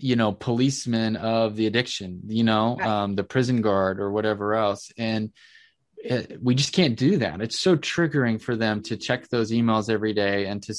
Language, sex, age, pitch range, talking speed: English, male, 20-39, 100-115 Hz, 190 wpm